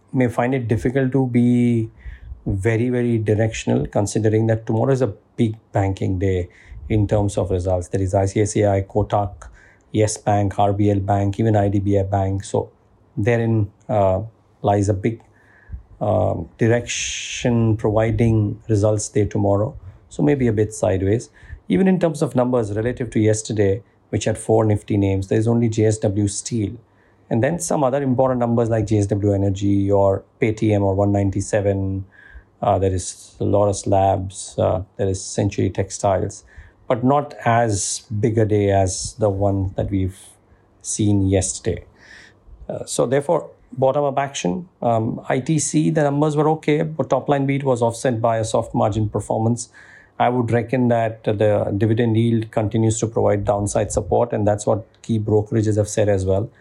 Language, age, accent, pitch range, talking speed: English, 50-69, Indian, 100-115 Hz, 155 wpm